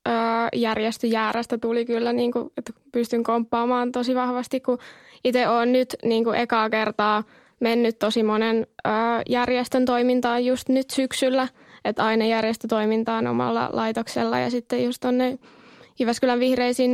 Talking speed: 125 wpm